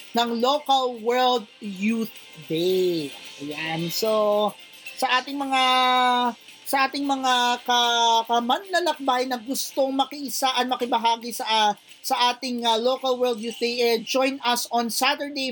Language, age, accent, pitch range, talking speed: Filipino, 40-59, native, 210-255 Hz, 120 wpm